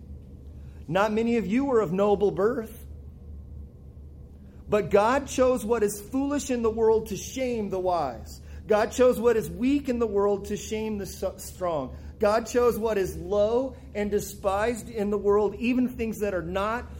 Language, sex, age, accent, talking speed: English, male, 40-59, American, 170 wpm